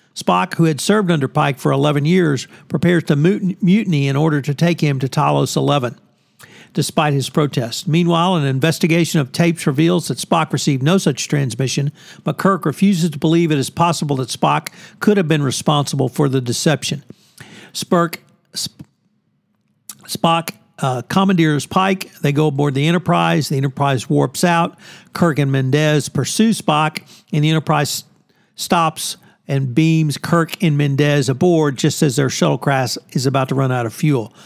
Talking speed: 160 wpm